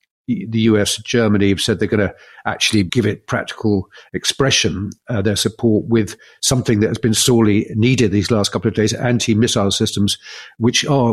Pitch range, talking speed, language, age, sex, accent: 105-125 Hz, 175 wpm, English, 50-69, male, British